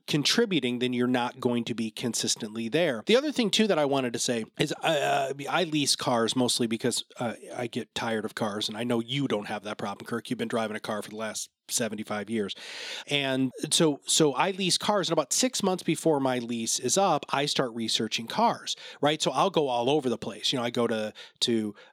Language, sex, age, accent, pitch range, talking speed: English, male, 30-49, American, 120-175 Hz, 235 wpm